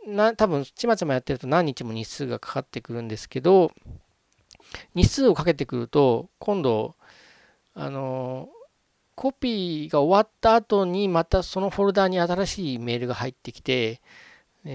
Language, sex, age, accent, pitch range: Japanese, male, 40-59, native, 120-180 Hz